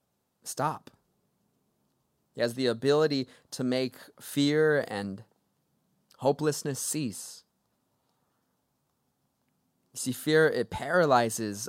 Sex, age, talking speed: male, 20-39, 80 wpm